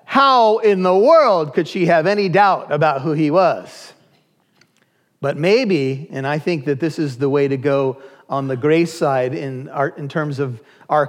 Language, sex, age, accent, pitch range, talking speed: English, male, 40-59, American, 145-195 Hz, 185 wpm